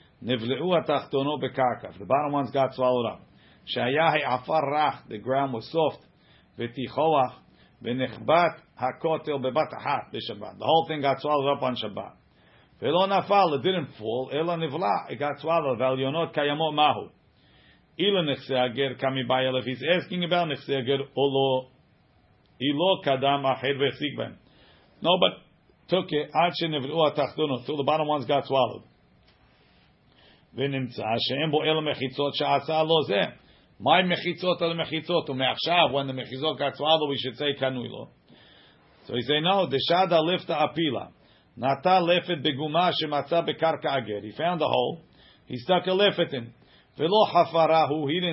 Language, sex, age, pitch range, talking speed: English, male, 50-69, 130-165 Hz, 65 wpm